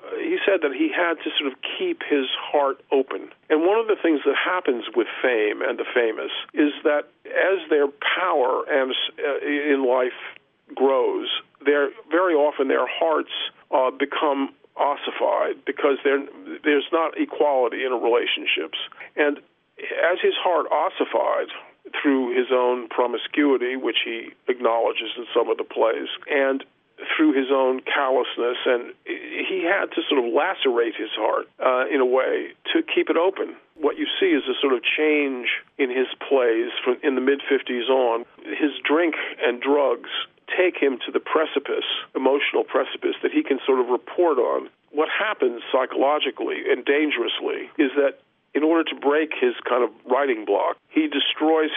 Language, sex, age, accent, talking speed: English, male, 50-69, American, 160 wpm